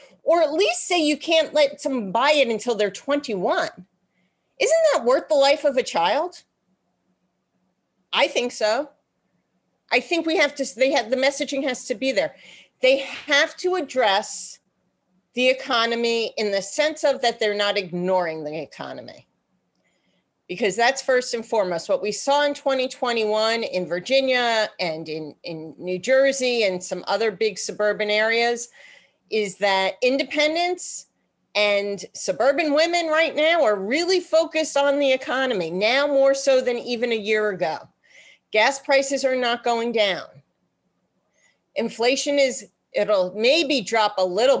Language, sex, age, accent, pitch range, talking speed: English, female, 40-59, American, 210-285 Hz, 150 wpm